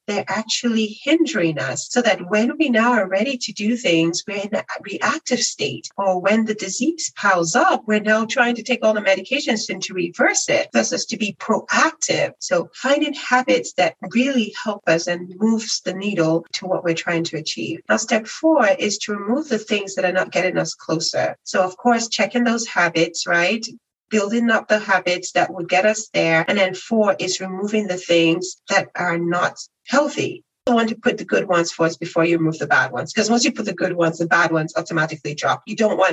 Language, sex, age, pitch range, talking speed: English, female, 40-59, 175-235 Hz, 215 wpm